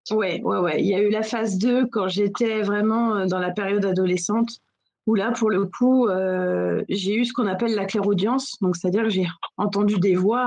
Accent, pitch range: French, 190-230 Hz